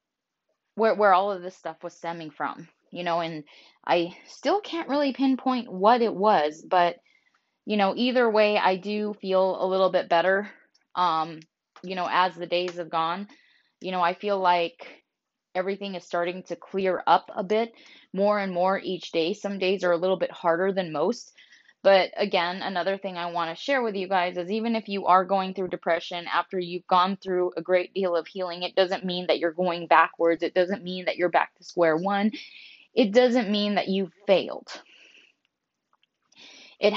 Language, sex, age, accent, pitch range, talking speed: English, female, 10-29, American, 175-200 Hz, 190 wpm